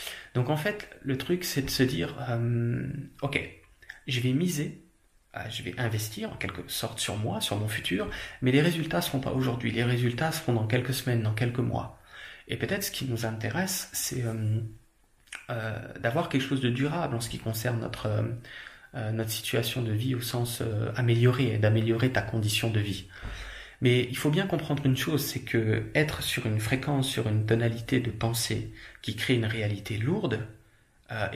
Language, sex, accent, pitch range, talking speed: French, male, French, 115-130 Hz, 190 wpm